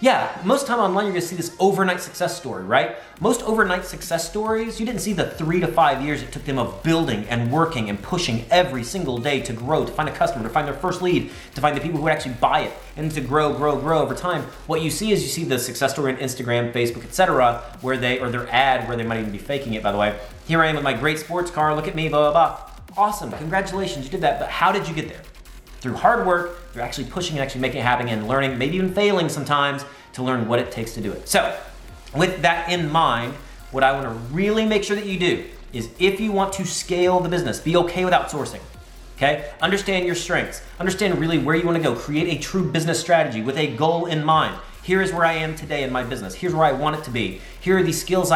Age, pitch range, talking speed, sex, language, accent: 30-49, 130-180 Hz, 260 wpm, male, English, American